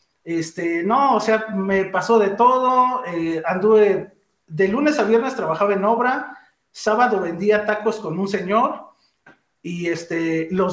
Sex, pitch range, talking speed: male, 175-220 Hz, 145 wpm